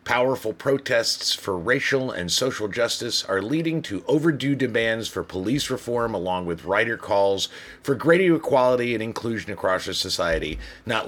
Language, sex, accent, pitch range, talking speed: English, male, American, 95-140 Hz, 150 wpm